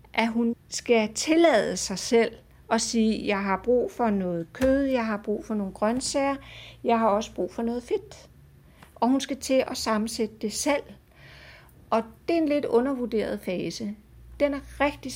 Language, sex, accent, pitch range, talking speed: Danish, female, native, 200-255 Hz, 180 wpm